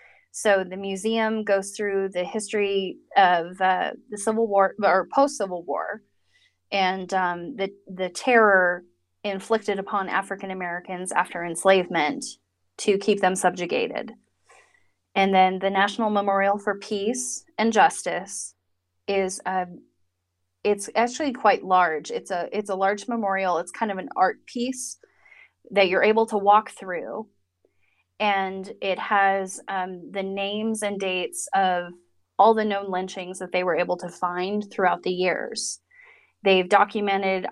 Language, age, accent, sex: English, 20-39, American, female